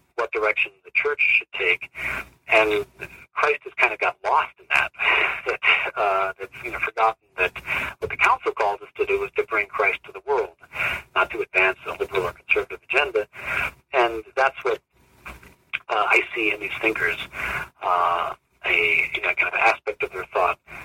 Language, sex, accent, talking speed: English, male, American, 180 wpm